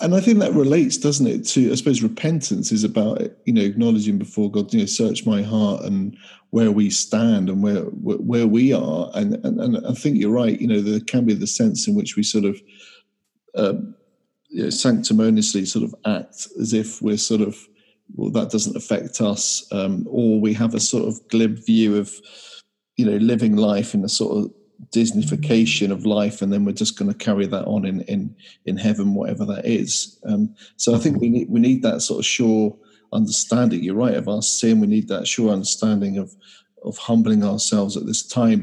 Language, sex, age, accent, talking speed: English, male, 40-59, British, 205 wpm